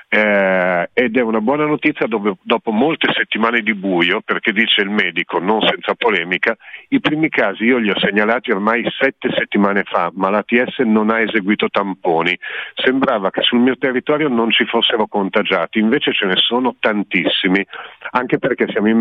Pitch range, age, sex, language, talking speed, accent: 100-120 Hz, 50-69, male, Italian, 165 wpm, native